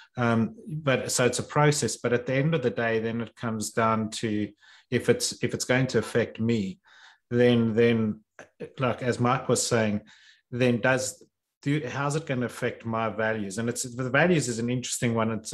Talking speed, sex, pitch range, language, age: 200 wpm, male, 115-130 Hz, English, 30-49